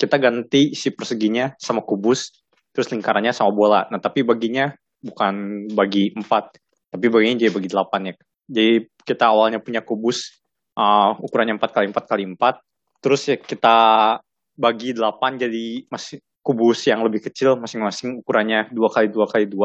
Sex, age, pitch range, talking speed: male, 20-39, 110-135 Hz, 145 wpm